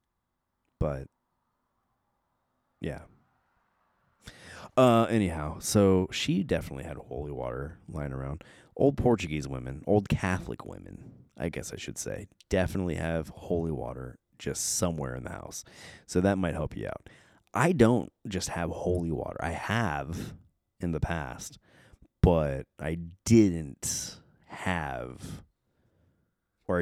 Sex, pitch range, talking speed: male, 80-100 Hz, 120 wpm